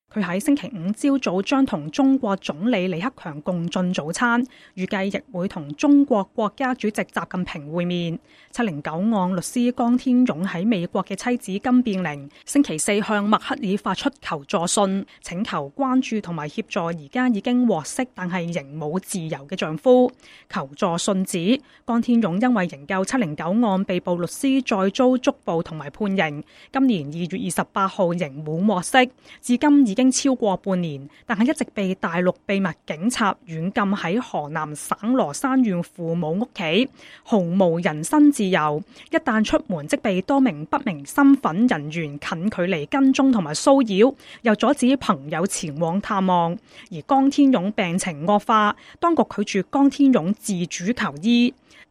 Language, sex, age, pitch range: English, female, 20-39, 180-250 Hz